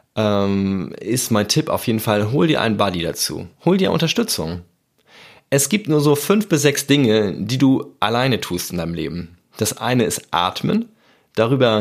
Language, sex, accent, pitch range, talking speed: German, male, German, 105-140 Hz, 175 wpm